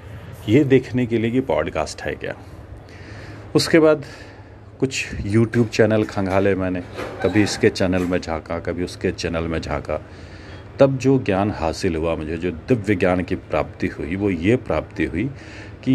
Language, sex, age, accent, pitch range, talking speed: Hindi, male, 40-59, native, 95-130 Hz, 160 wpm